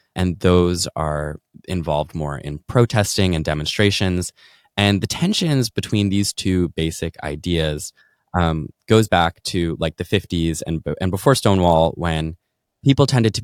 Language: English